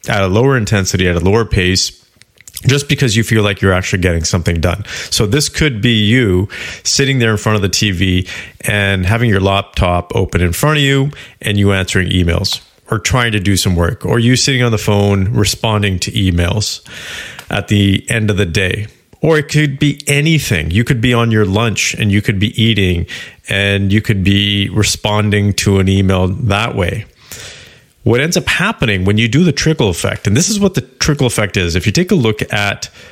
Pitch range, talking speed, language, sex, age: 95-120 Hz, 205 wpm, English, male, 30-49